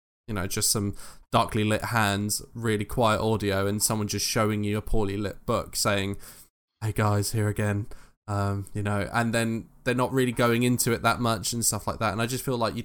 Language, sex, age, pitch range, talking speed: English, male, 10-29, 105-120 Hz, 220 wpm